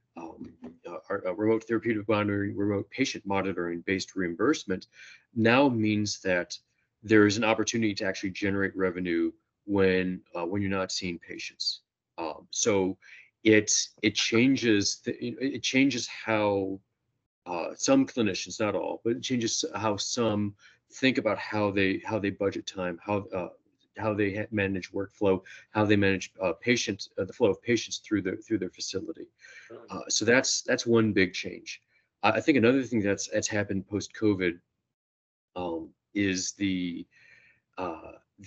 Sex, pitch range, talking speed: male, 95-110 Hz, 155 wpm